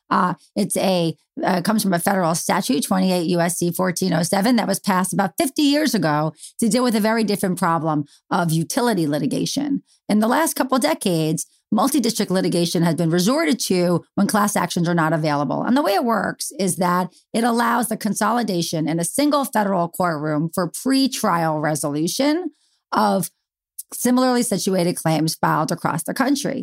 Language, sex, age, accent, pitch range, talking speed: English, female, 40-59, American, 165-225 Hz, 175 wpm